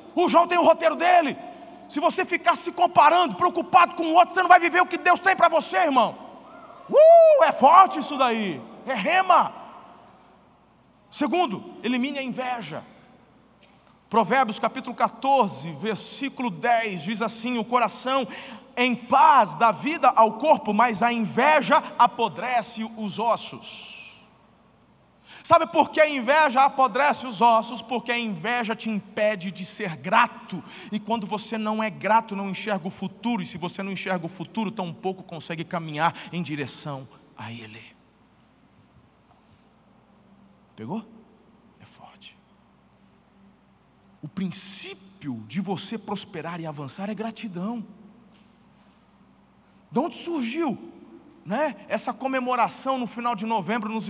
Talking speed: 135 wpm